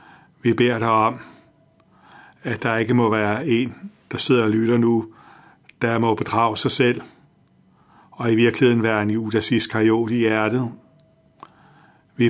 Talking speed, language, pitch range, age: 145 wpm, Danish, 110-125 Hz, 60-79